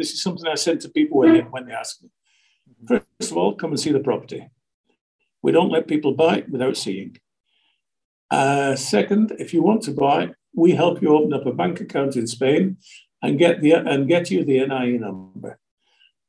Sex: male